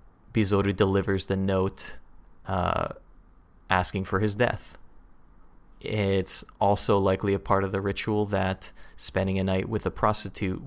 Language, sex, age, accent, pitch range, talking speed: English, male, 30-49, American, 95-110 Hz, 135 wpm